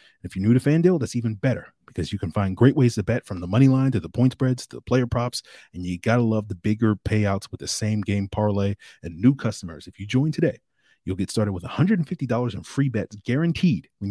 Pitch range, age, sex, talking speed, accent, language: 95-125 Hz, 30-49, male, 265 wpm, American, English